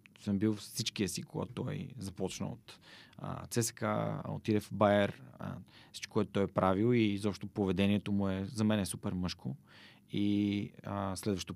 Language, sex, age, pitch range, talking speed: Bulgarian, male, 30-49, 95-115 Hz, 160 wpm